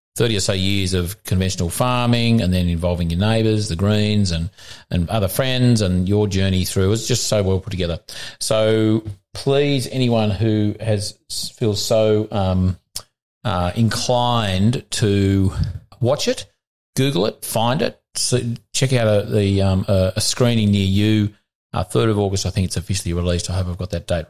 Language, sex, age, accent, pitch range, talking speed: English, male, 40-59, Australian, 95-115 Hz, 175 wpm